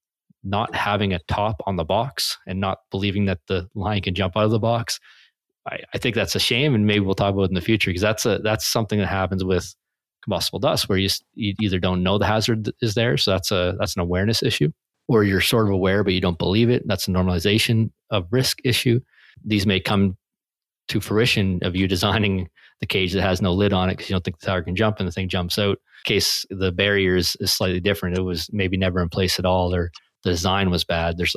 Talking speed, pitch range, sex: 245 wpm, 90-105 Hz, male